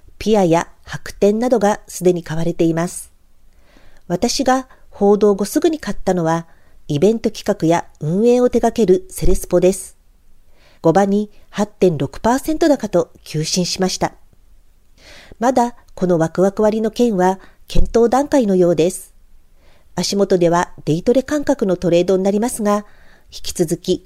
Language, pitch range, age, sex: Japanese, 170-220 Hz, 50-69, female